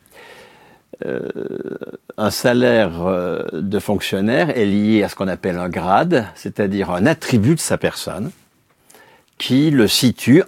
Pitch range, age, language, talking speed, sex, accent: 90-125 Hz, 50-69, French, 130 wpm, male, French